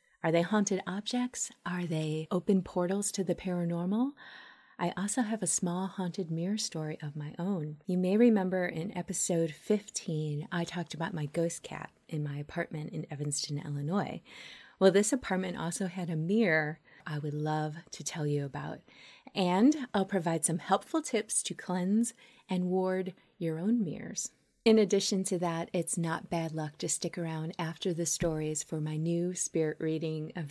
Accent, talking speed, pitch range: American, 170 wpm, 160-200 Hz